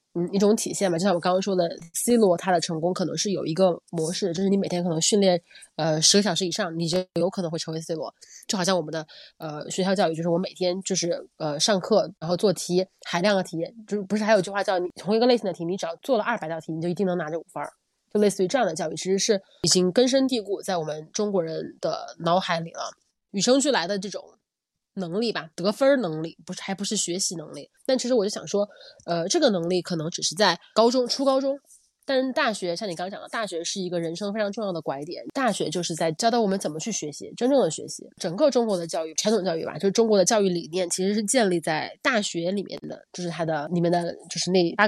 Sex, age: female, 20-39